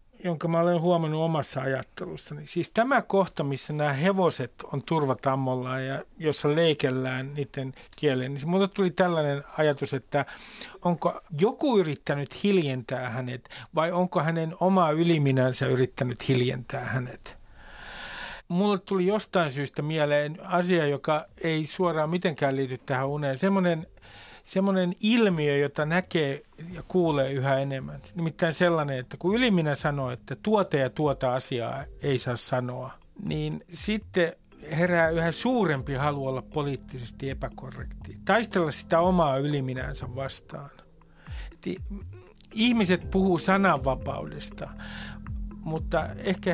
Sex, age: male, 50-69